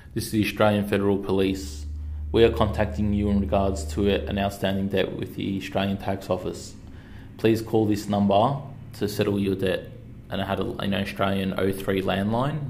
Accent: Australian